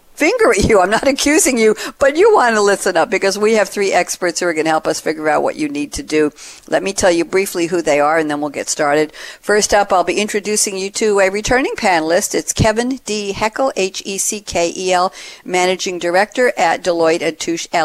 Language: English